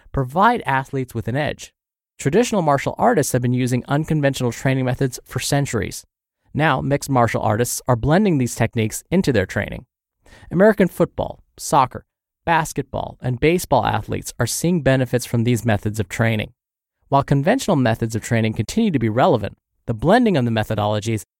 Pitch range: 110-145 Hz